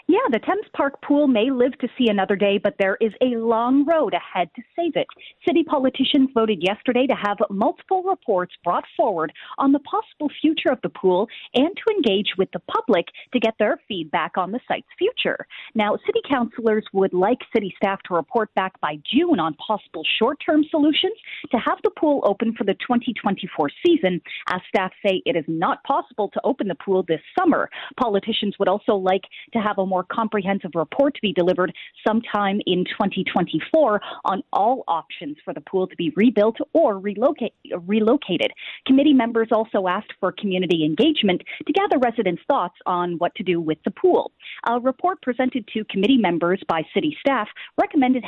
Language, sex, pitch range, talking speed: English, female, 190-275 Hz, 180 wpm